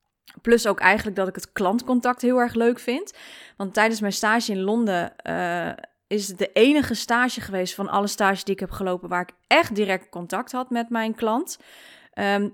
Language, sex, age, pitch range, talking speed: Dutch, female, 20-39, 195-255 Hz, 195 wpm